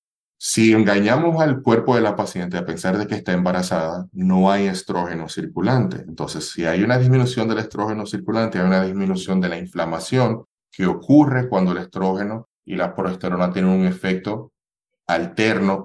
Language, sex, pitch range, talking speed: Spanish, male, 95-115 Hz, 165 wpm